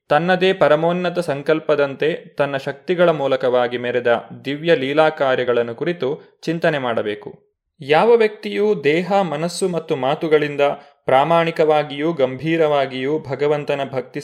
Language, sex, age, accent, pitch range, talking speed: Kannada, male, 20-39, native, 135-175 Hz, 95 wpm